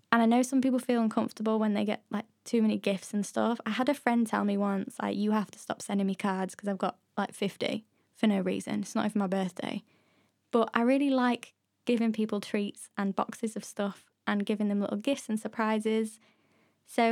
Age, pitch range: 10-29, 210-245 Hz